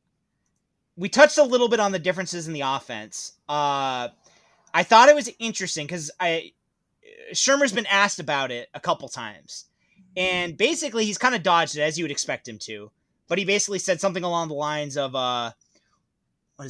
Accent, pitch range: American, 150-195 Hz